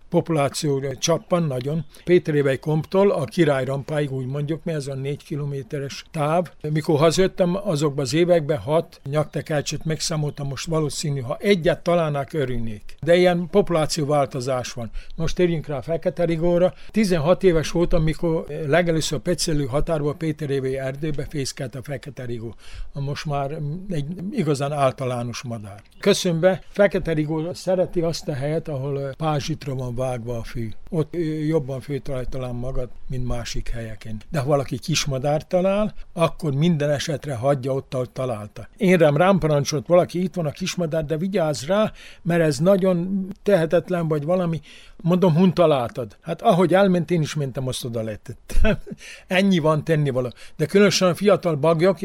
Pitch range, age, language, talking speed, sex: 140-175 Hz, 60-79, Hungarian, 145 wpm, male